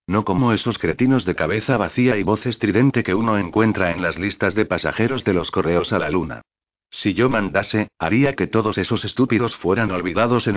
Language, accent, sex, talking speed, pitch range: Spanish, Spanish, male, 200 wpm, 95-115 Hz